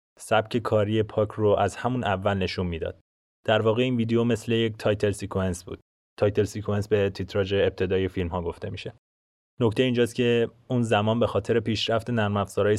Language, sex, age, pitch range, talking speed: Persian, male, 20-39, 95-110 Hz, 180 wpm